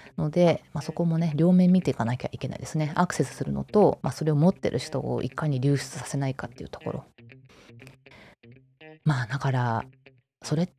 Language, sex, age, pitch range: Japanese, female, 20-39, 130-165 Hz